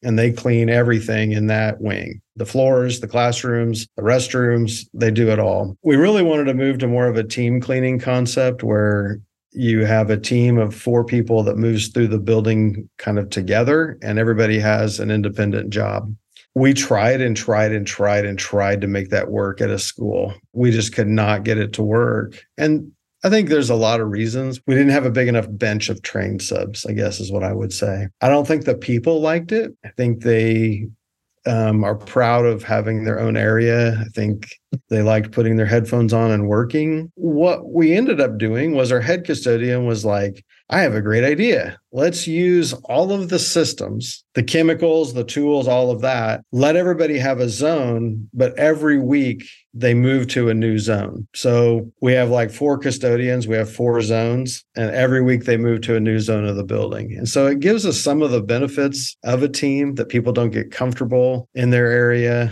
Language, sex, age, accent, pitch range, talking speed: English, male, 50-69, American, 110-130 Hz, 205 wpm